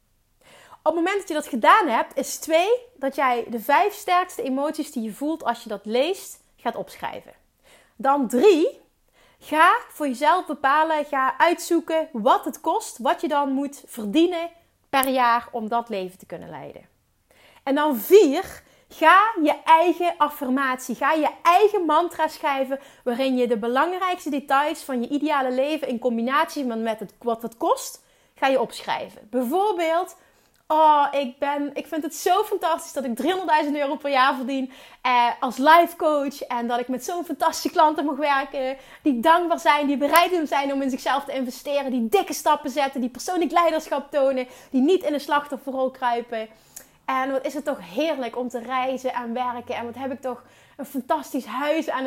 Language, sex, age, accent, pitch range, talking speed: Dutch, female, 30-49, Dutch, 255-320 Hz, 175 wpm